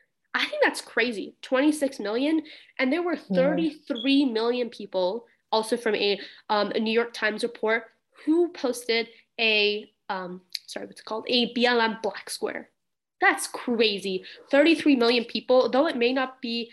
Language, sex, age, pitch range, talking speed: English, female, 10-29, 215-265 Hz, 155 wpm